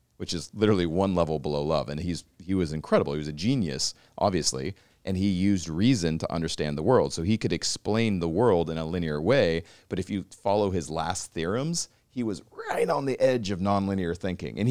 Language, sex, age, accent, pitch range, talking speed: English, male, 40-59, American, 75-100 Hz, 210 wpm